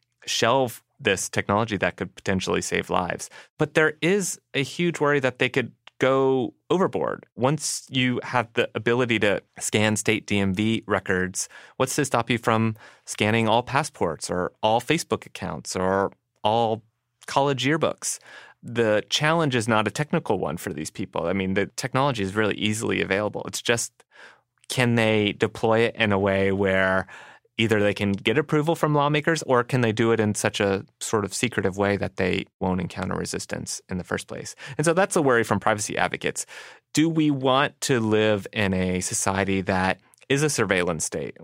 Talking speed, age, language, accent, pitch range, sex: 175 wpm, 30-49, English, American, 100-135 Hz, male